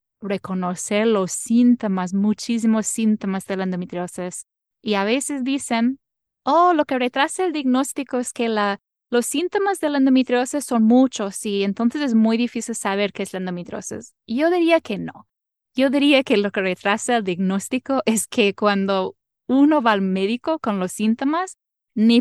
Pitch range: 195-255 Hz